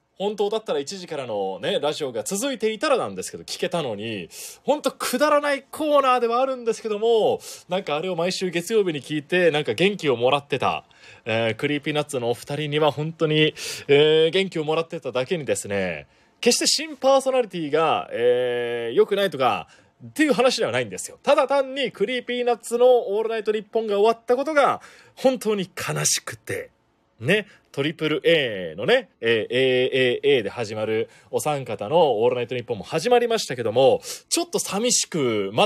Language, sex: Japanese, male